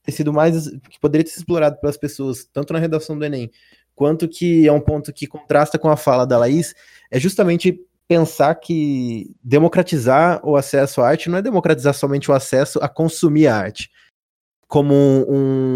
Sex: male